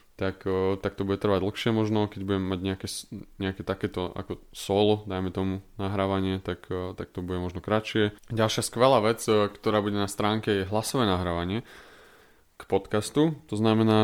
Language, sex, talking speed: Slovak, male, 160 wpm